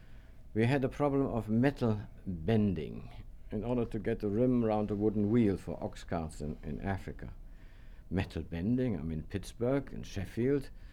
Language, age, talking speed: English, 60-79, 165 wpm